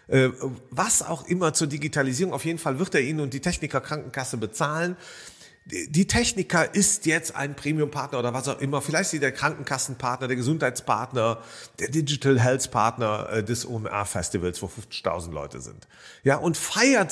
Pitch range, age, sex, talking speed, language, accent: 135-185 Hz, 40-59, male, 160 wpm, German, German